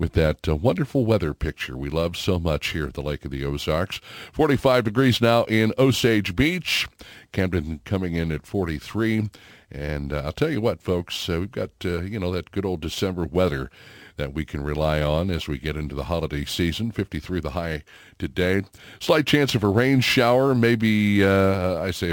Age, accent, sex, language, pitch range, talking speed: 60-79, American, male, English, 75-105 Hz, 195 wpm